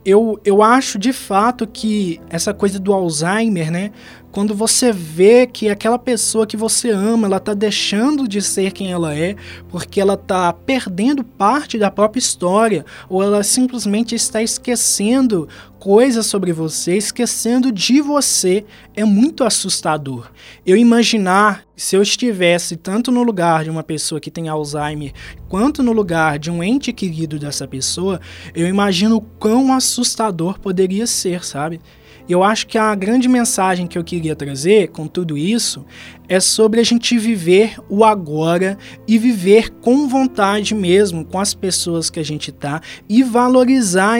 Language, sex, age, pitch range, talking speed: Portuguese, male, 20-39, 170-230 Hz, 155 wpm